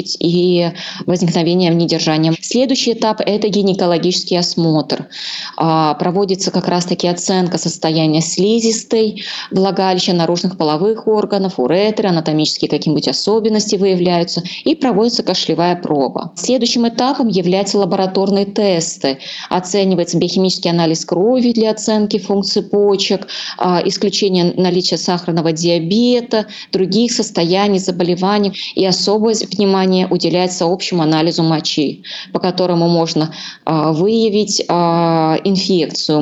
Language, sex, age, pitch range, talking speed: Russian, female, 20-39, 170-210 Hz, 100 wpm